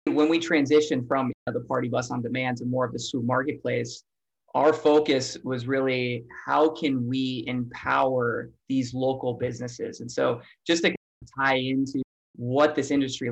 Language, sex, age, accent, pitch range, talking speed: English, male, 20-39, American, 125-150 Hz, 160 wpm